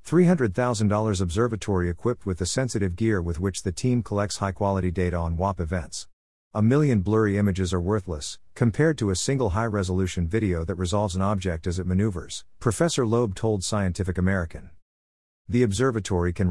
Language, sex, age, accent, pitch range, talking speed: English, male, 50-69, American, 90-115 Hz, 155 wpm